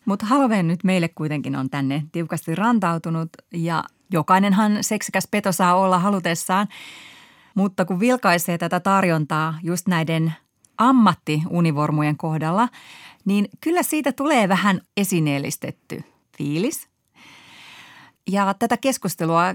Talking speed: 105 wpm